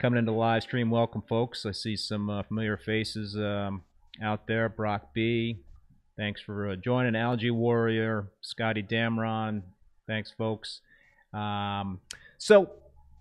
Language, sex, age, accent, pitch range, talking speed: English, male, 30-49, American, 100-115 Hz, 135 wpm